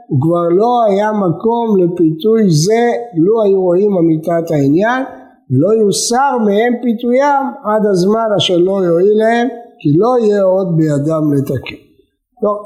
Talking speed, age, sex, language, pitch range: 140 wpm, 60-79, male, Hebrew, 160-230 Hz